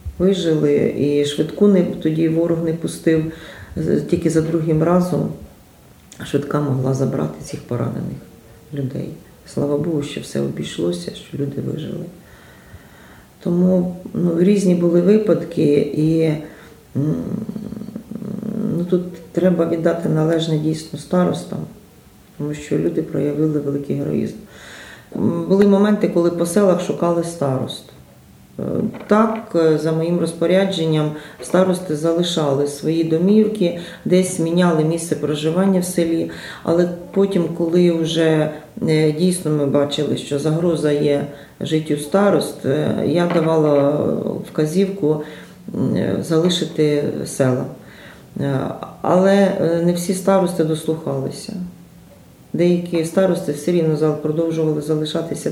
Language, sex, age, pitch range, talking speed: Ukrainian, female, 40-59, 150-180 Hz, 105 wpm